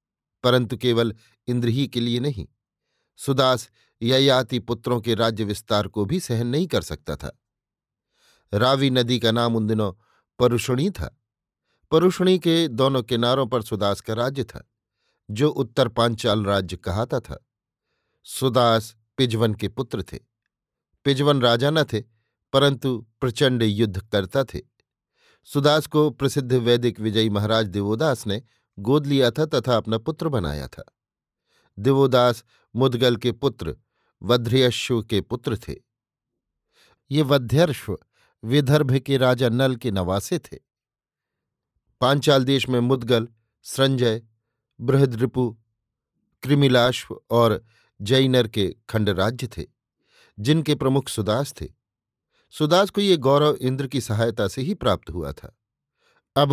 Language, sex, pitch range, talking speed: Hindi, male, 110-135 Hz, 120 wpm